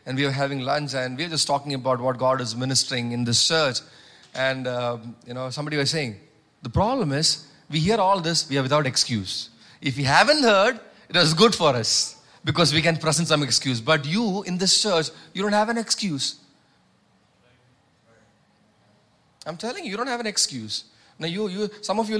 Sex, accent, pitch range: male, Indian, 150-205 Hz